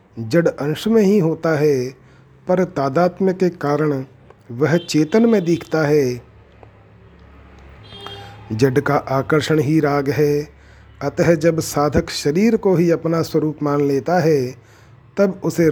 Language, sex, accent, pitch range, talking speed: Hindi, male, native, 135-165 Hz, 130 wpm